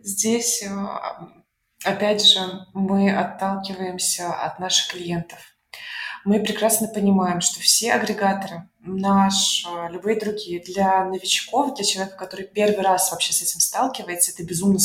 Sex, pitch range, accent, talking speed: female, 185-220 Hz, native, 120 wpm